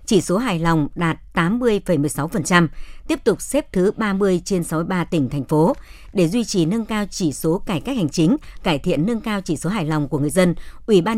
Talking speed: 240 wpm